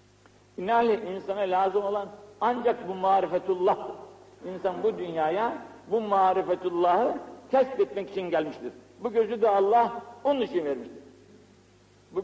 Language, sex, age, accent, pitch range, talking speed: Turkish, male, 60-79, native, 180-245 Hz, 120 wpm